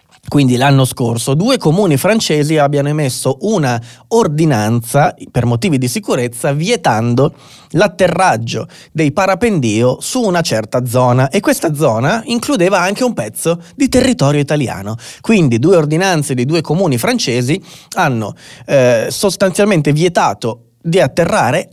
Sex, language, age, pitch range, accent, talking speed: male, Italian, 30-49, 120-170 Hz, native, 125 wpm